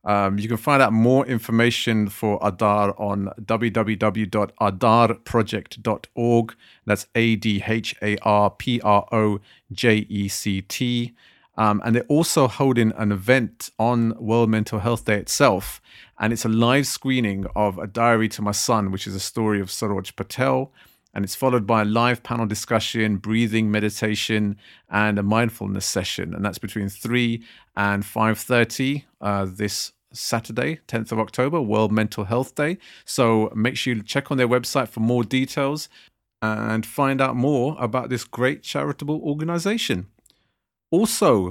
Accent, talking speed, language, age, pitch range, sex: British, 135 wpm, English, 30-49, 105-125 Hz, male